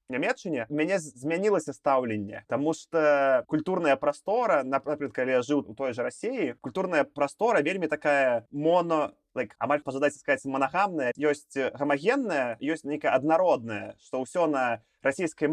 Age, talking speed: 20-39, 140 wpm